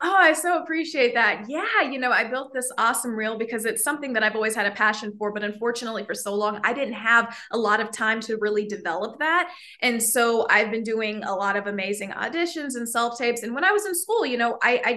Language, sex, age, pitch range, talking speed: English, female, 20-39, 215-275 Hz, 245 wpm